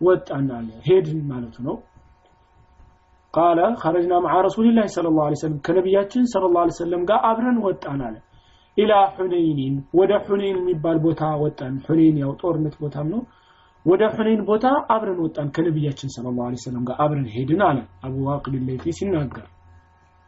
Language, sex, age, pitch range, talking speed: Amharic, male, 30-49, 140-190 Hz, 100 wpm